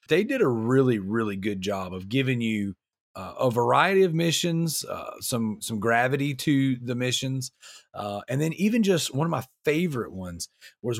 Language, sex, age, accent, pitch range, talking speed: English, male, 30-49, American, 110-145 Hz, 180 wpm